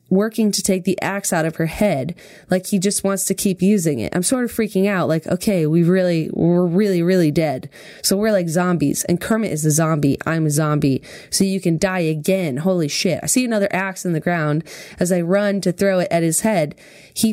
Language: English